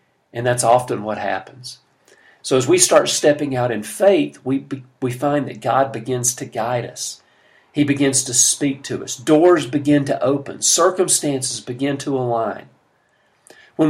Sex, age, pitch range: male, 50-69, 125-155 Hz